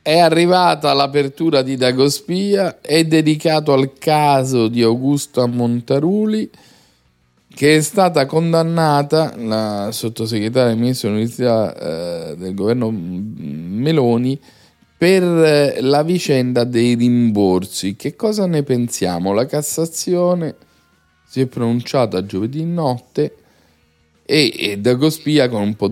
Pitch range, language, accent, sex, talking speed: 115-160 Hz, Italian, native, male, 110 wpm